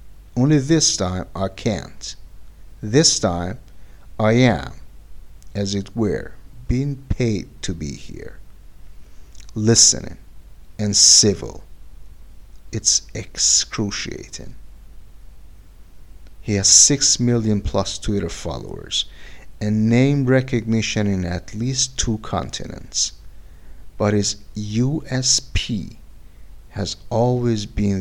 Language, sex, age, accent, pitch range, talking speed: English, male, 50-69, American, 90-115 Hz, 90 wpm